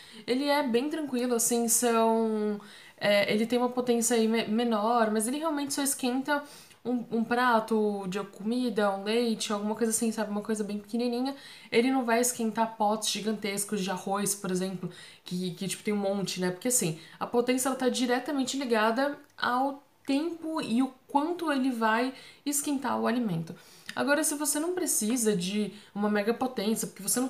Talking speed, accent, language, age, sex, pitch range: 175 wpm, Brazilian, Portuguese, 10-29, female, 210-255 Hz